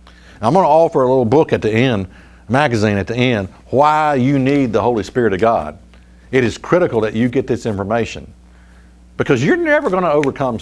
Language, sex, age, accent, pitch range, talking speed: English, male, 50-69, American, 105-145 Hz, 205 wpm